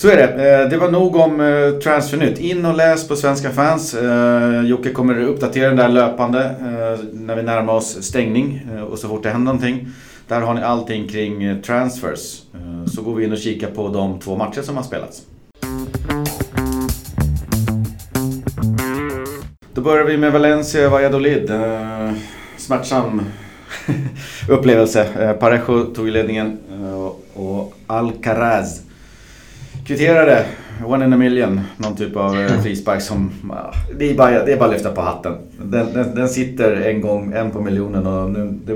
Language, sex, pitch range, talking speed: Swedish, male, 105-130 Hz, 145 wpm